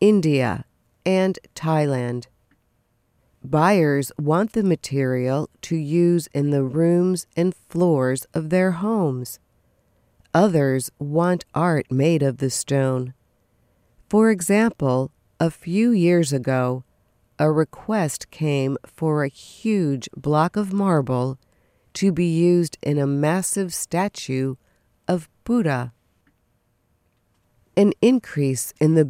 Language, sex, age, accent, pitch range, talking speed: English, female, 50-69, American, 130-180 Hz, 105 wpm